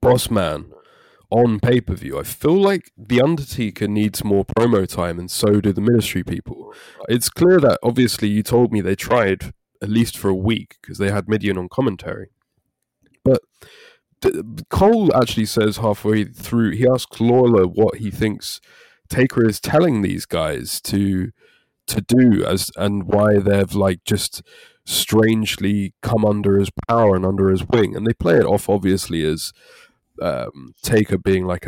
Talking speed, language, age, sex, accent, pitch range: 165 wpm, English, 20-39, male, British, 95-120 Hz